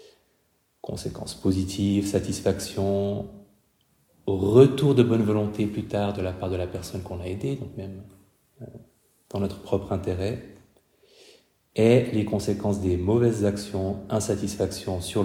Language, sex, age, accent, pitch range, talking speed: French, male, 30-49, French, 100-135 Hz, 125 wpm